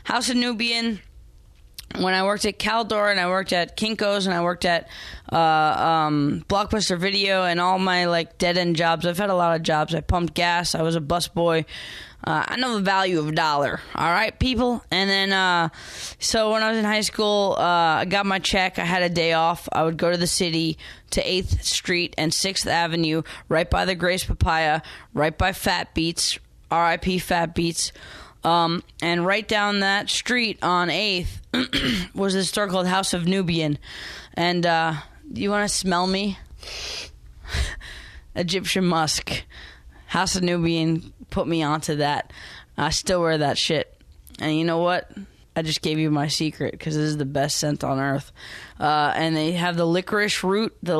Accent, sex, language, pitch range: American, female, English, 160-195 Hz